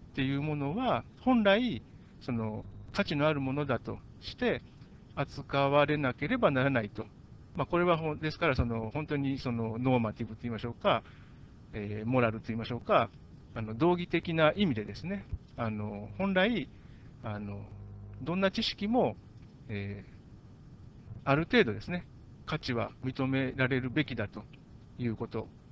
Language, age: Japanese, 60-79